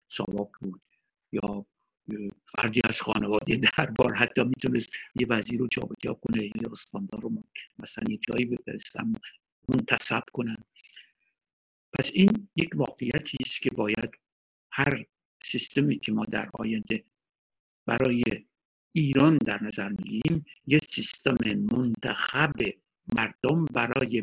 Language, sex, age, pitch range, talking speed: Persian, male, 60-79, 115-150 Hz, 120 wpm